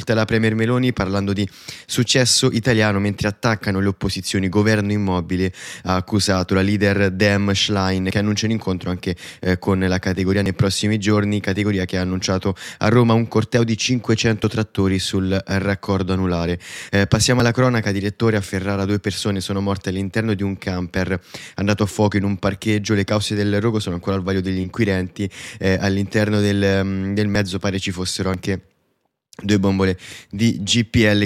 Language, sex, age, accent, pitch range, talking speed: Italian, male, 20-39, native, 95-105 Hz, 170 wpm